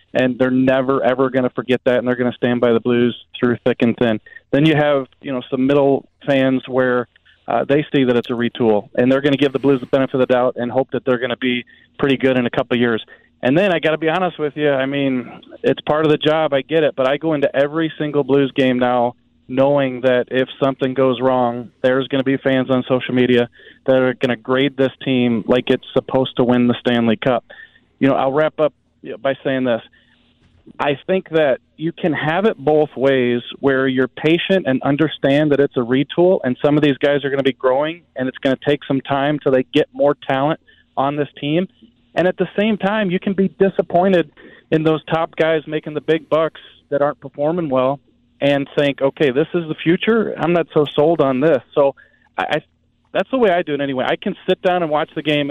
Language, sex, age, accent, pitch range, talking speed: English, male, 30-49, American, 130-155 Hz, 240 wpm